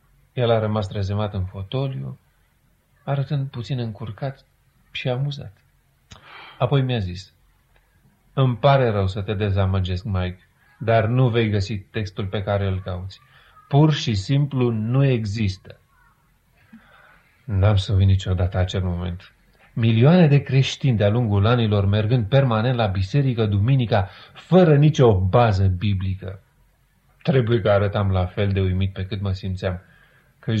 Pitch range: 100-135 Hz